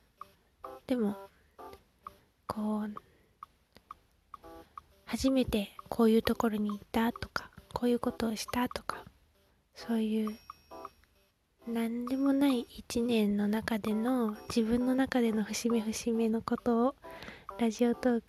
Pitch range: 215-245 Hz